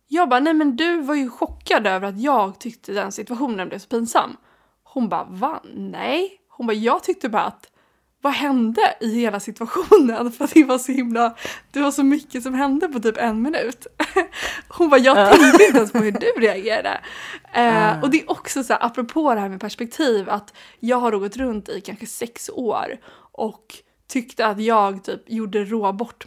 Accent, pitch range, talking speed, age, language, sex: native, 215-260 Hz, 190 wpm, 20-39, Swedish, female